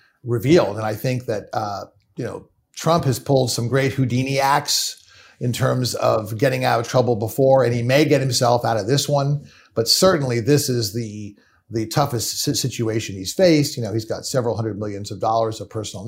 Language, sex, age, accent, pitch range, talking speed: English, male, 50-69, American, 110-135 Hz, 200 wpm